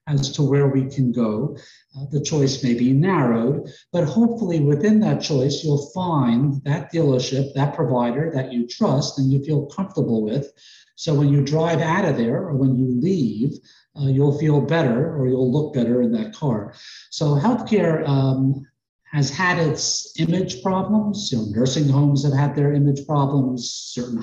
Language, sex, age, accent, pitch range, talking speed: English, male, 50-69, American, 130-165 Hz, 170 wpm